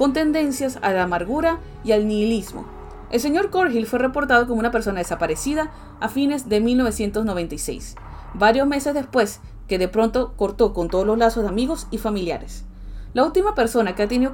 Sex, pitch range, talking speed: female, 195-260 Hz, 175 wpm